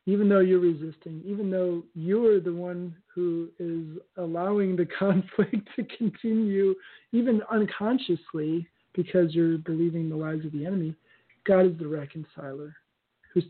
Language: English